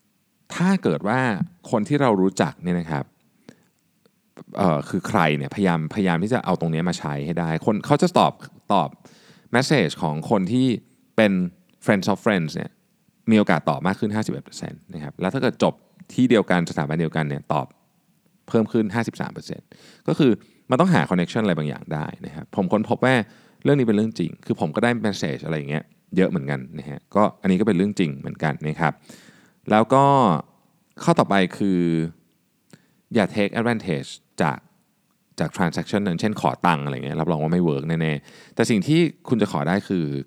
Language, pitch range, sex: Thai, 80-115 Hz, male